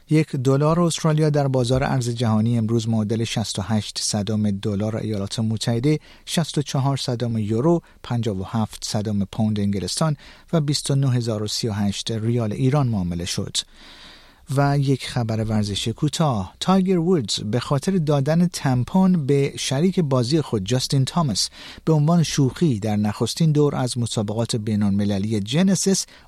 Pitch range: 110-150 Hz